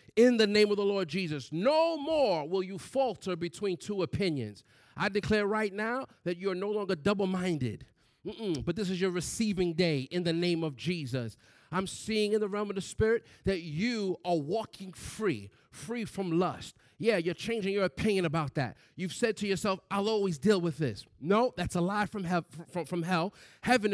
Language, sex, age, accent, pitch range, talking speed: English, male, 40-59, American, 170-225 Hz, 190 wpm